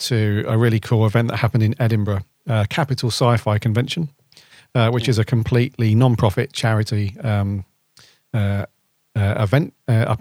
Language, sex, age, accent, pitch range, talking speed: English, male, 40-59, British, 110-135 Hz, 155 wpm